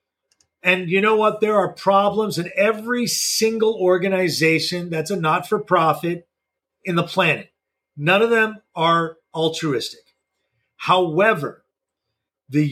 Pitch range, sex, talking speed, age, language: 170-225 Hz, male, 115 wpm, 40-59, English